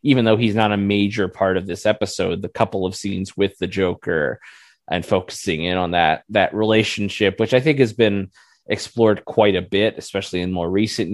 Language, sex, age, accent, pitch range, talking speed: English, male, 20-39, American, 95-110 Hz, 200 wpm